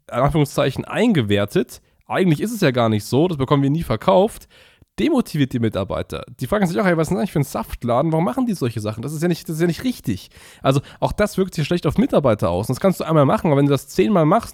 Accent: German